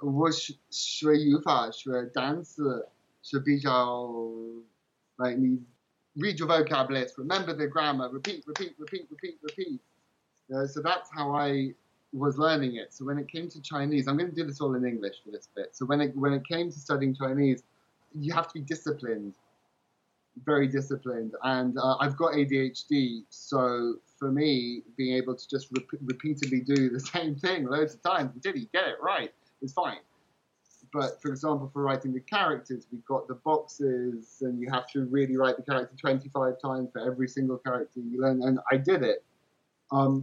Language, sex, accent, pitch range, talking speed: English, male, British, 125-150 Hz, 165 wpm